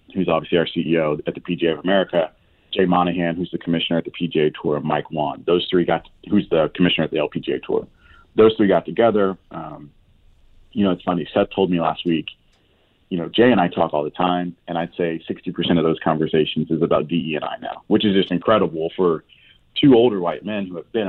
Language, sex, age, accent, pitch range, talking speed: English, male, 30-49, American, 80-95 Hz, 220 wpm